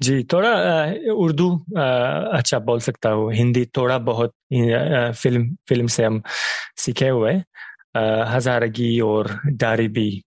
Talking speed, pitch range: 135 wpm, 110-135 Hz